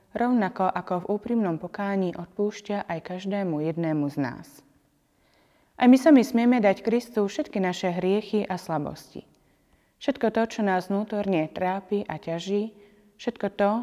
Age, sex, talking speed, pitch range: 20-39, female, 140 wpm, 180-215 Hz